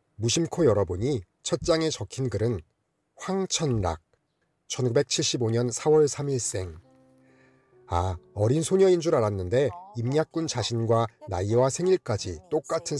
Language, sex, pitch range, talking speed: English, male, 105-155 Hz, 90 wpm